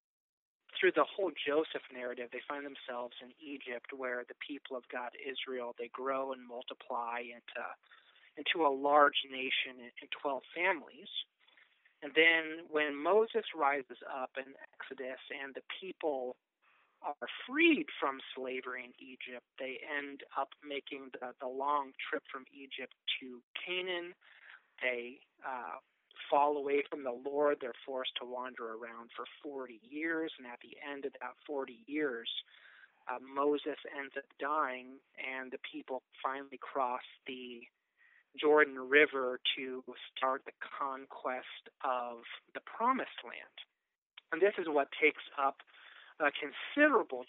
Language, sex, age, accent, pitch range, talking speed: English, male, 40-59, American, 125-145 Hz, 140 wpm